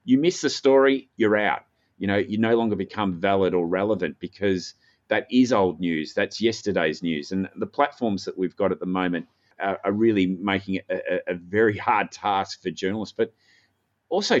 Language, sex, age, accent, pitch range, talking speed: English, male, 30-49, Australian, 90-115 Hz, 190 wpm